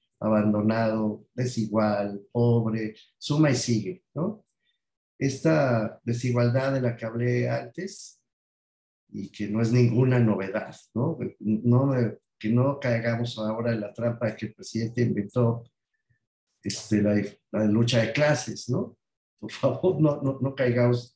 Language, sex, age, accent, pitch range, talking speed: Spanish, male, 50-69, Mexican, 110-140 Hz, 135 wpm